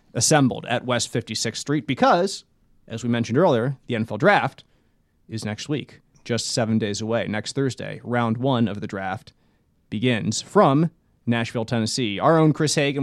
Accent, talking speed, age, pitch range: American, 160 wpm, 30-49, 120-170 Hz